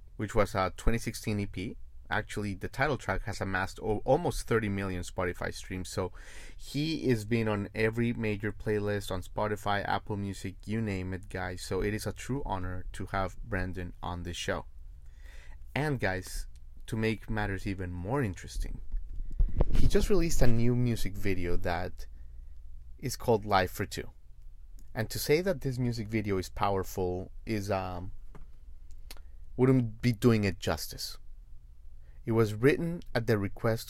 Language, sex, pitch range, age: English, male, 75-110 Hz, 30-49